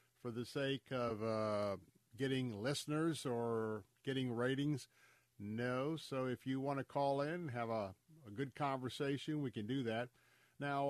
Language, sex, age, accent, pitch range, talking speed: English, male, 50-69, American, 120-140 Hz, 160 wpm